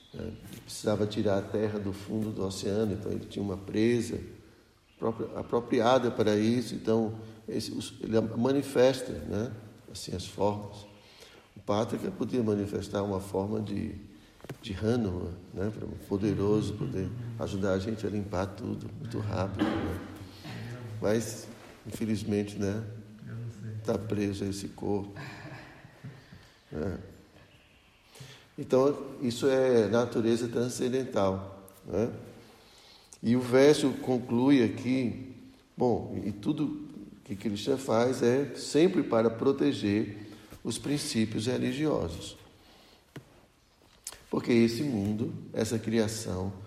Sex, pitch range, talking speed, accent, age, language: male, 100-120 Hz, 110 wpm, Brazilian, 60-79, Portuguese